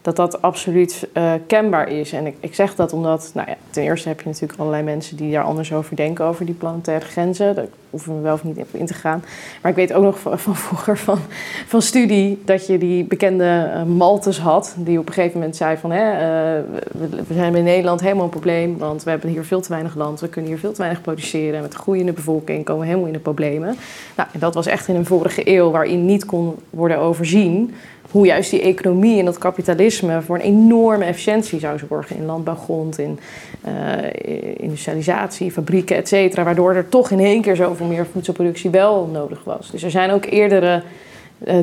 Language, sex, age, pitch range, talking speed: Dutch, female, 20-39, 160-195 Hz, 215 wpm